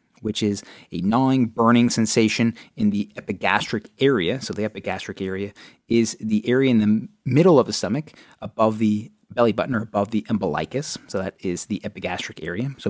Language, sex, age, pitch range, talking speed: English, male, 30-49, 105-130 Hz, 175 wpm